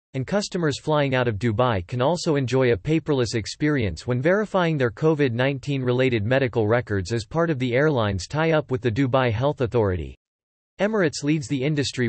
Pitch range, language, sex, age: 115-150 Hz, English, male, 40-59